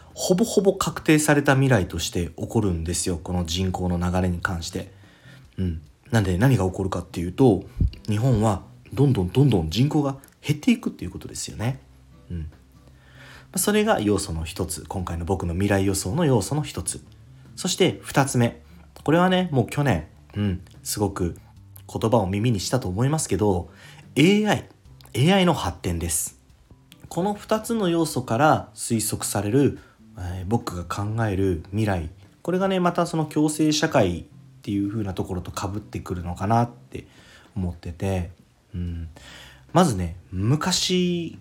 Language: Japanese